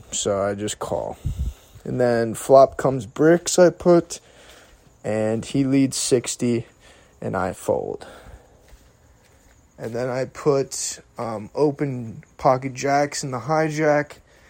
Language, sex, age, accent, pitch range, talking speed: English, male, 20-39, American, 120-145 Hz, 120 wpm